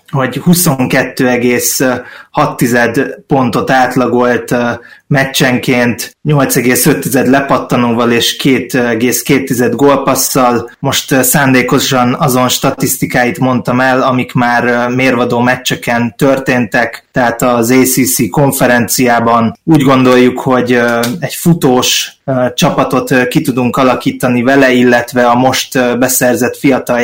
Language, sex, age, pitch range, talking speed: Hungarian, male, 20-39, 120-135 Hz, 90 wpm